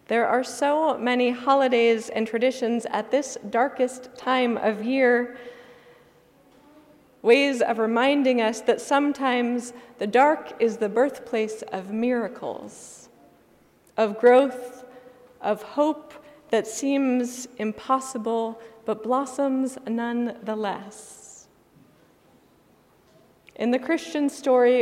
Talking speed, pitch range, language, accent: 95 wpm, 225-260 Hz, English, American